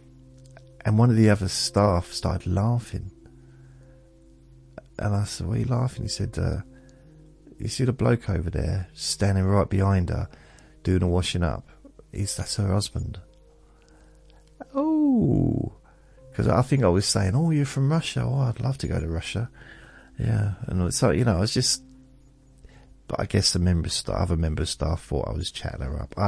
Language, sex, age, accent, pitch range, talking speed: English, male, 40-59, British, 80-120 Hz, 175 wpm